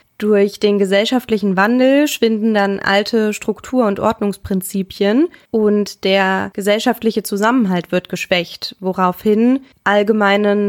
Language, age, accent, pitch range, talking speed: German, 20-39, German, 190-220 Hz, 100 wpm